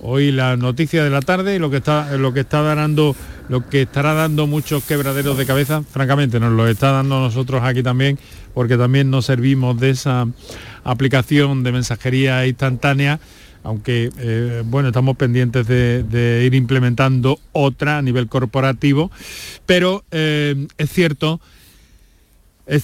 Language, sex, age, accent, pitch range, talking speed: Spanish, male, 40-59, Spanish, 120-150 Hz, 135 wpm